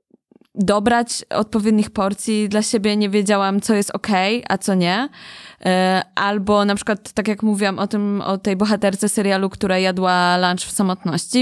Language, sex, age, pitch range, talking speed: Polish, female, 20-39, 195-225 Hz, 160 wpm